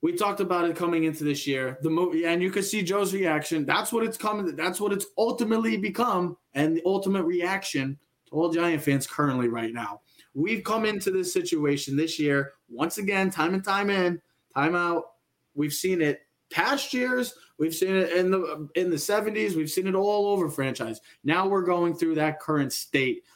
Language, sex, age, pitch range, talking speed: English, male, 20-39, 150-190 Hz, 200 wpm